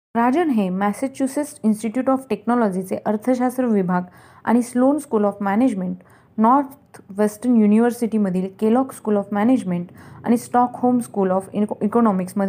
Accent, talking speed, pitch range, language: native, 130 wpm, 195-245 Hz, Marathi